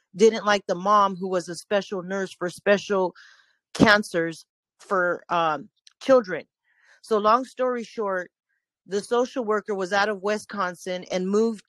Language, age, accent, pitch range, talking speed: English, 40-59, American, 185-235 Hz, 145 wpm